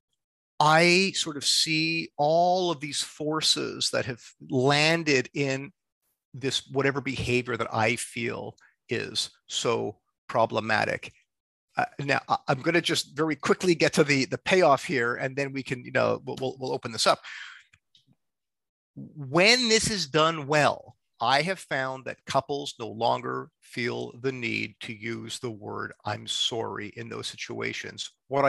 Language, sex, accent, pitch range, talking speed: English, male, American, 125-160 Hz, 150 wpm